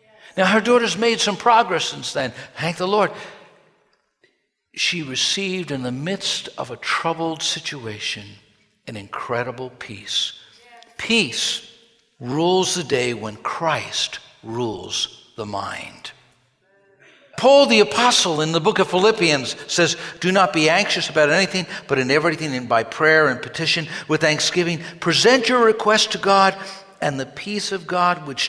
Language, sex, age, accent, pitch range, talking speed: English, male, 60-79, American, 145-210 Hz, 140 wpm